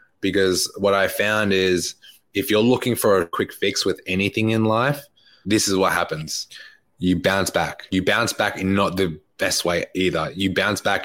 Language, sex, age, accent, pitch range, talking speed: English, male, 20-39, Australian, 95-125 Hz, 190 wpm